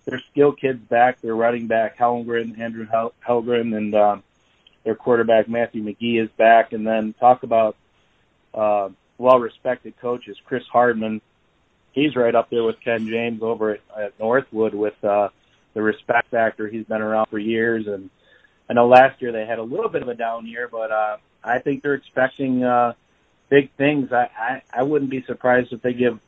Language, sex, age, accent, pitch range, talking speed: English, male, 30-49, American, 110-125 Hz, 185 wpm